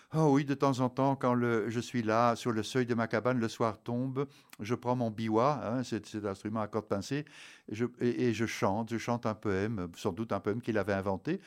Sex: male